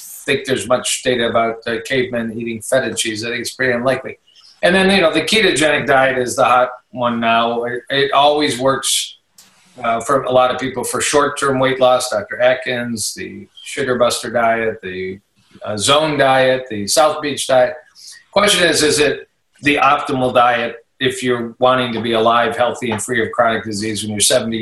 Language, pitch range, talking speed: English, 115-140 Hz, 190 wpm